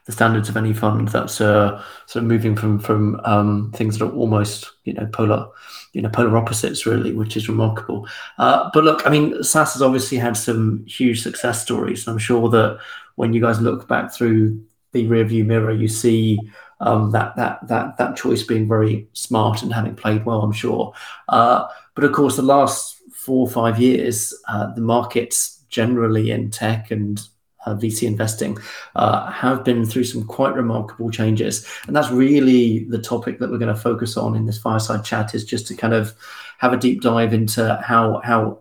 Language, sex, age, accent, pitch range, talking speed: English, male, 30-49, British, 110-120 Hz, 195 wpm